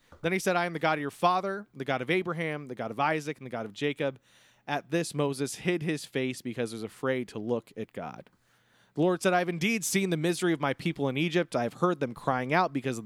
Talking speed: 270 wpm